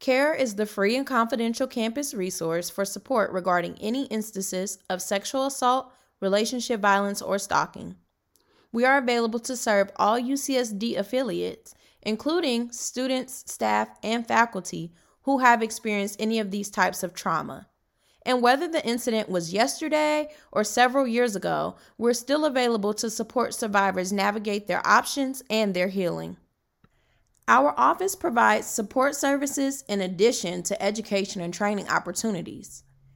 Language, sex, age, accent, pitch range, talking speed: English, female, 20-39, American, 195-250 Hz, 140 wpm